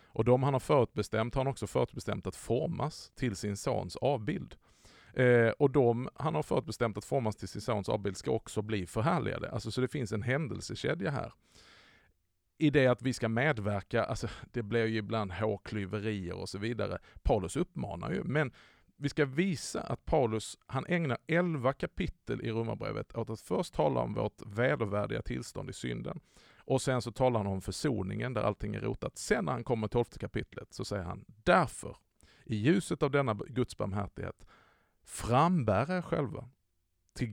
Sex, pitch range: male, 100-130 Hz